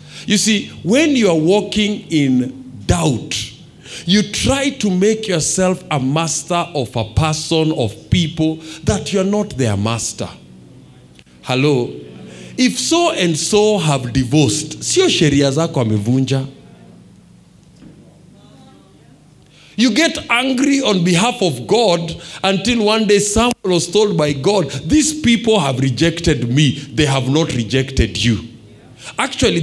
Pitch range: 135-210 Hz